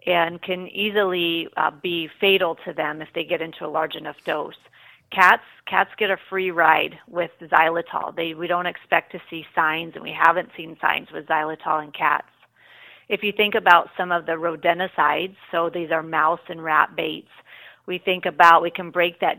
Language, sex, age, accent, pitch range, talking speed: English, female, 30-49, American, 160-185 Hz, 190 wpm